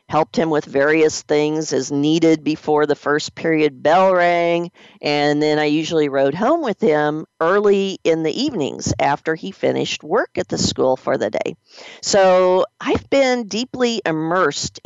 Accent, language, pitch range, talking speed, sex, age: American, English, 150-195 Hz, 160 wpm, female, 50-69